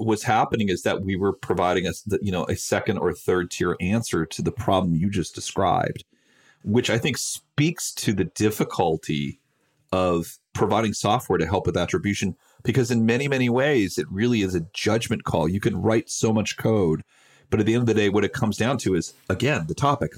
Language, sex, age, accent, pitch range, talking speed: English, male, 40-59, American, 95-125 Hz, 205 wpm